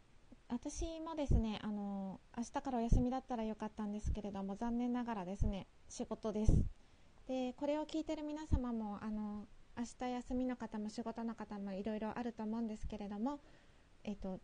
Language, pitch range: Japanese, 210-255 Hz